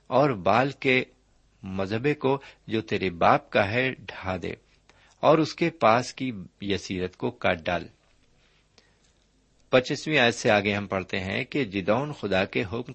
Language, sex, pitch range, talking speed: Urdu, male, 95-130 Hz, 140 wpm